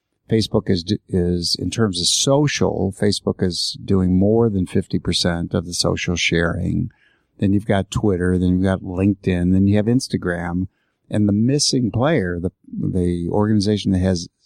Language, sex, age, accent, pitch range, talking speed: English, male, 50-69, American, 90-110 Hz, 160 wpm